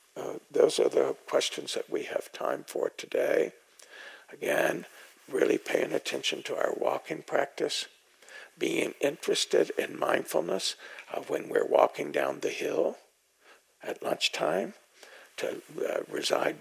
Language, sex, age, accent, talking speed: English, male, 60-79, American, 125 wpm